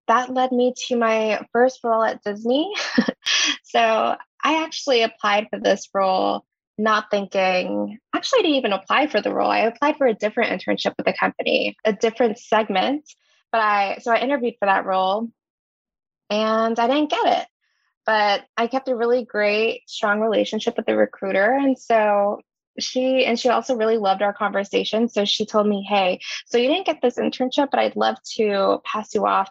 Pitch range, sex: 200-245 Hz, female